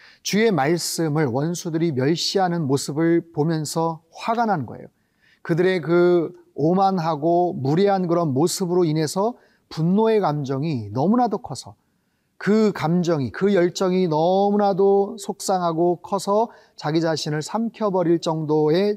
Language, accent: Korean, native